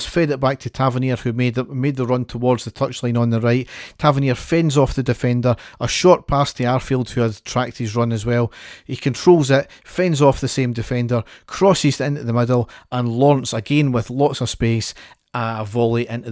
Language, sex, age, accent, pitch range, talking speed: English, male, 40-59, British, 115-135 Hz, 205 wpm